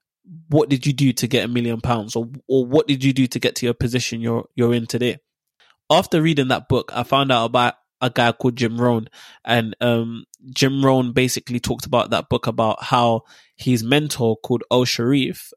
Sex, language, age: male, English, 20-39